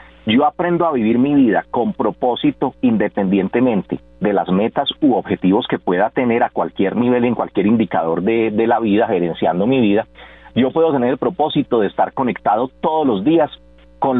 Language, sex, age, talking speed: Spanish, male, 40-59, 180 wpm